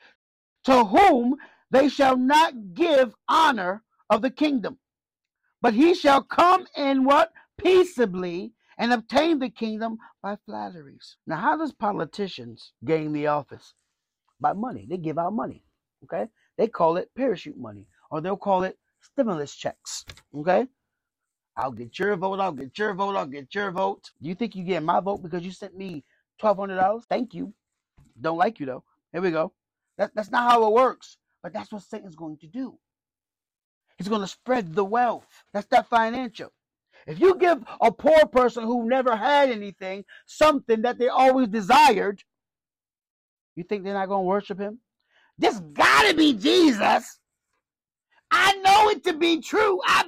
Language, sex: English, male